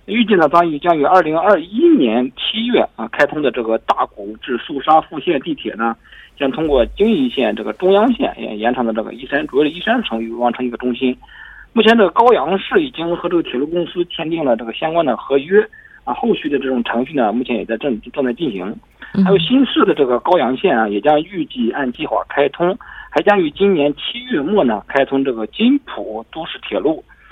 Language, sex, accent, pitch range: Korean, male, Chinese, 135-225 Hz